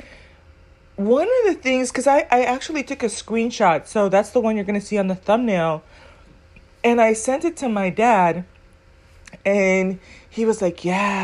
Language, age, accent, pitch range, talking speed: English, 30-49, American, 190-270 Hz, 175 wpm